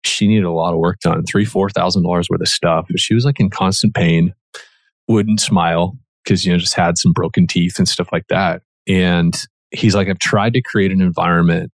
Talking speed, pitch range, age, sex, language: 225 wpm, 85-105 Hz, 30-49, male, English